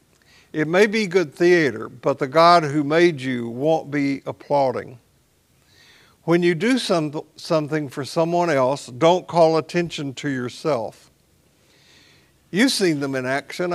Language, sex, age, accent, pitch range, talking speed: English, male, 60-79, American, 135-170 Hz, 135 wpm